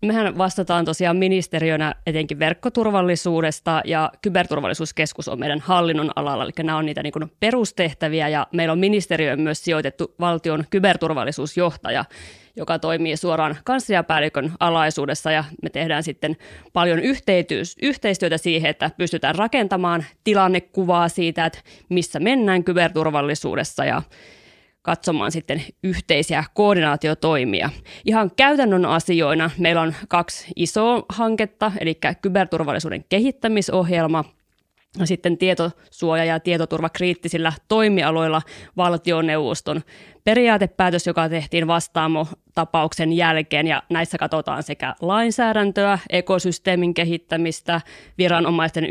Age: 30-49